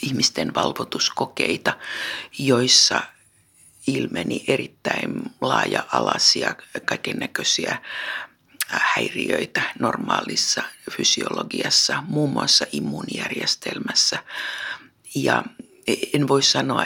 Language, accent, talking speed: Finnish, native, 60 wpm